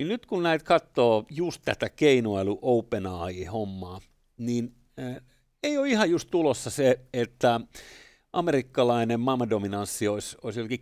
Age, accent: 50-69, native